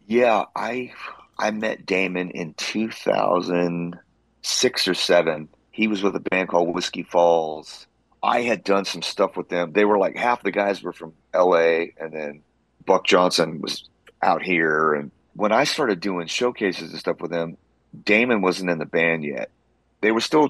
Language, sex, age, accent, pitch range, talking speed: English, male, 30-49, American, 80-95 Hz, 175 wpm